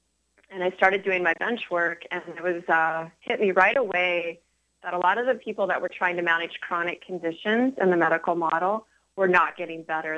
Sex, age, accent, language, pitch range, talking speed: female, 30-49, American, English, 165-185 Hz, 210 wpm